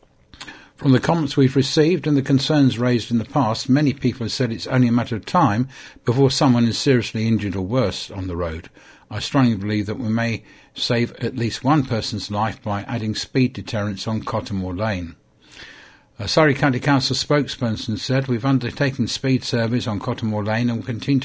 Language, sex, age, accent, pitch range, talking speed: English, male, 60-79, British, 110-135 Hz, 190 wpm